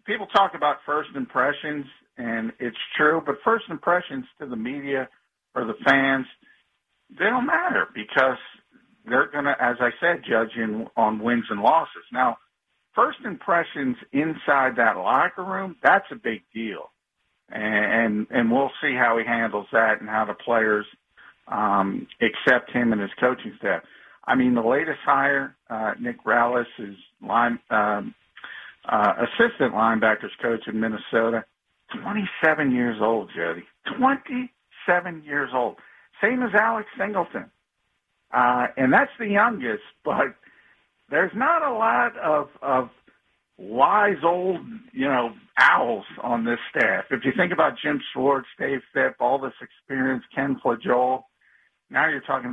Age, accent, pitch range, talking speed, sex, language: 50-69, American, 115-195 Hz, 145 wpm, male, English